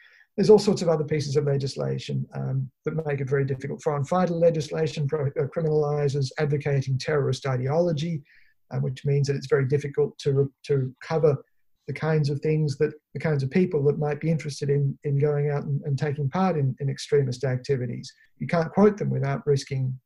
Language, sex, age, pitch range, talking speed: English, male, 50-69, 140-160 Hz, 190 wpm